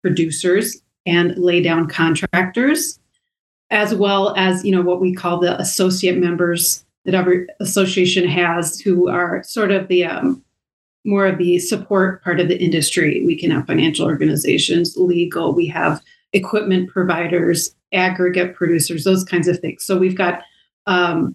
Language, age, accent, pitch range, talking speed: English, 30-49, American, 175-205 Hz, 150 wpm